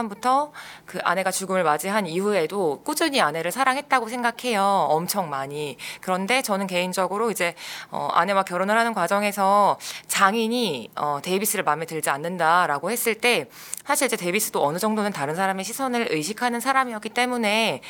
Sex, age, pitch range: female, 20-39, 165-235 Hz